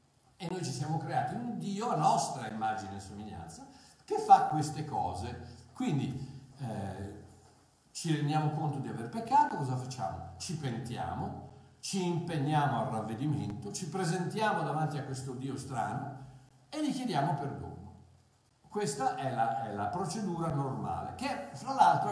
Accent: native